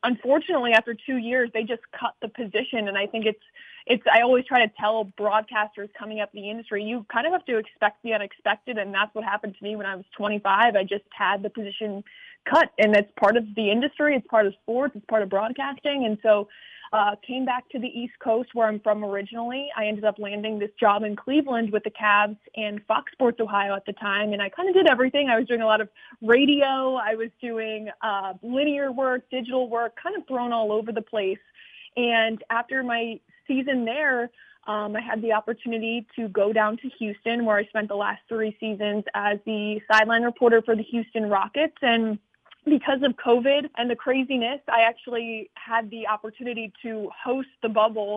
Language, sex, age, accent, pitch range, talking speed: English, female, 20-39, American, 210-250 Hz, 210 wpm